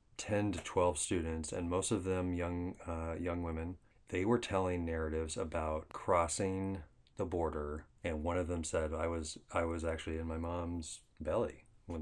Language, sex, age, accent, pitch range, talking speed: English, male, 30-49, American, 80-90 Hz, 175 wpm